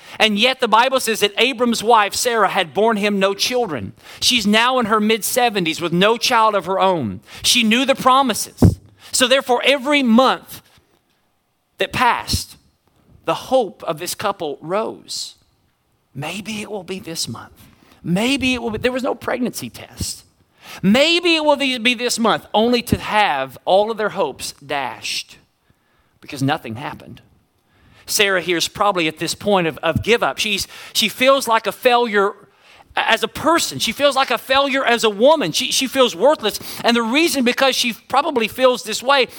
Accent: American